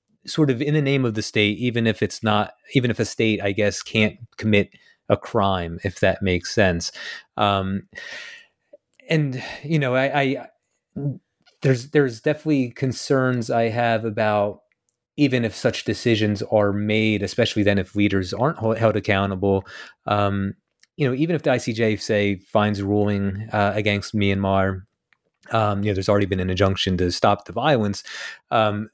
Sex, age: male, 30-49